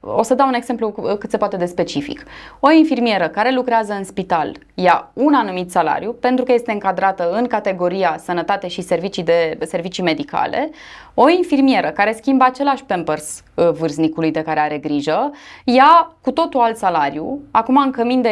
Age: 20-39